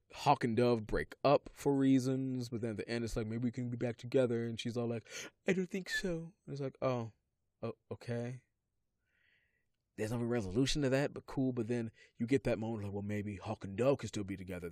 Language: English